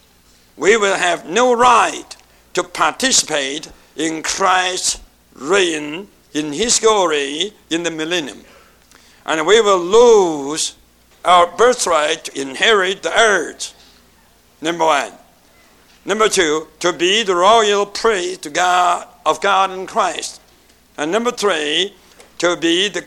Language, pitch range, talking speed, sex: English, 170-230 Hz, 115 wpm, male